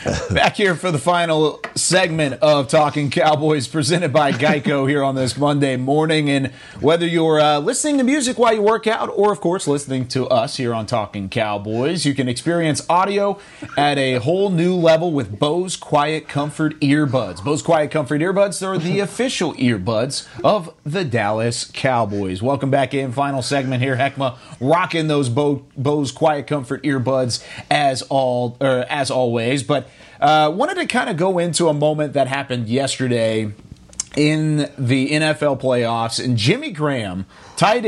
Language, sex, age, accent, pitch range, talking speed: English, male, 30-49, American, 130-170 Hz, 160 wpm